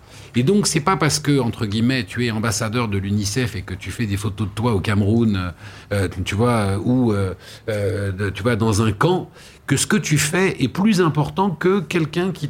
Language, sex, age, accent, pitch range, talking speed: French, male, 50-69, French, 100-130 Hz, 215 wpm